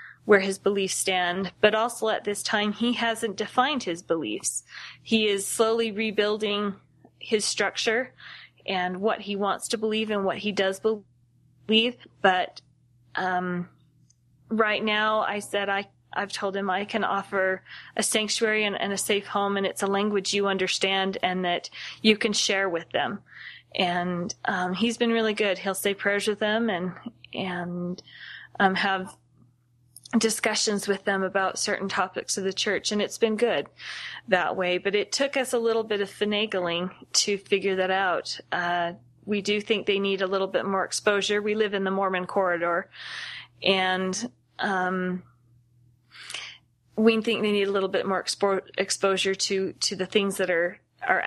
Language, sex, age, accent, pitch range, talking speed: English, female, 20-39, American, 185-210 Hz, 165 wpm